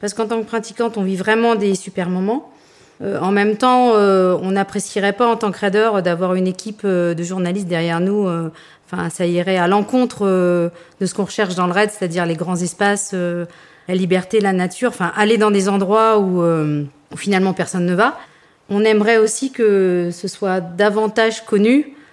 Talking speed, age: 200 wpm, 40-59